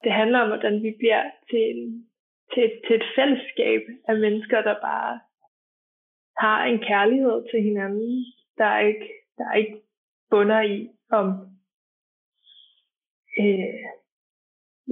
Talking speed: 135 wpm